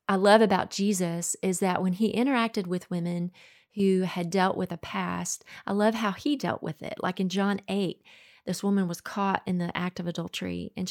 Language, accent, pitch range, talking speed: English, American, 185-220 Hz, 210 wpm